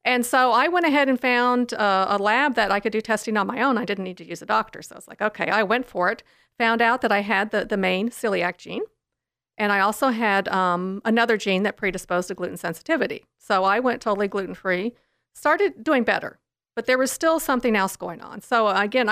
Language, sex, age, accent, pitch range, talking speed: English, female, 50-69, American, 195-250 Hz, 230 wpm